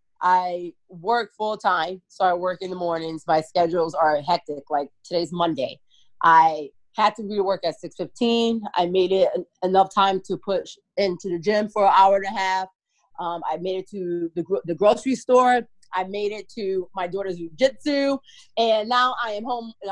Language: English